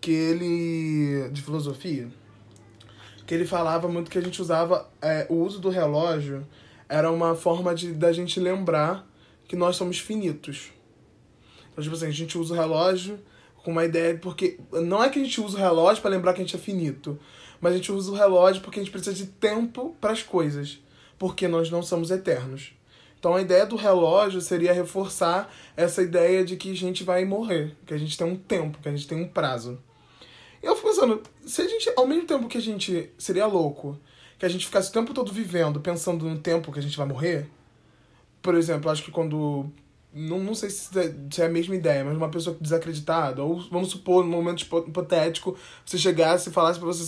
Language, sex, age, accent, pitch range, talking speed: Portuguese, male, 20-39, Brazilian, 155-190 Hz, 210 wpm